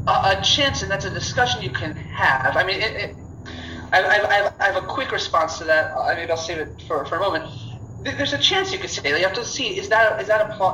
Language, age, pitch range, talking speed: English, 30-49, 140-190 Hz, 265 wpm